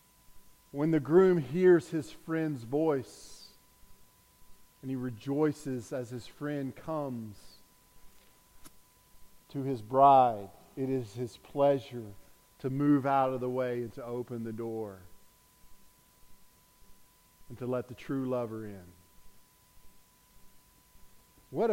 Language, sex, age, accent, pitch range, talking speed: English, male, 50-69, American, 120-145 Hz, 110 wpm